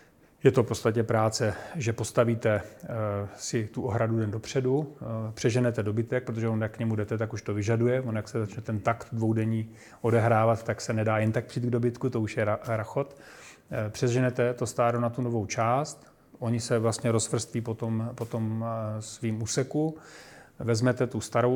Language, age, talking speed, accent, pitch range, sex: Czech, 40-59, 175 wpm, native, 110-120 Hz, male